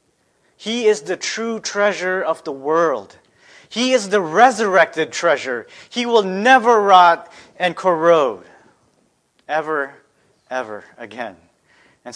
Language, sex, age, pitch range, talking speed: English, male, 30-49, 130-160 Hz, 115 wpm